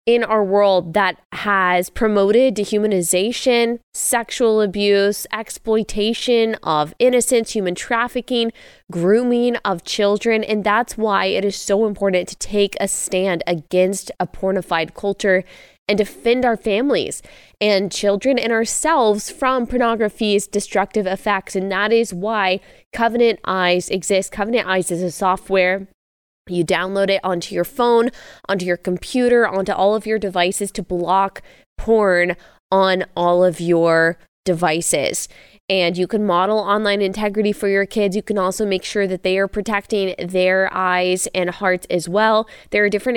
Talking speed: 145 wpm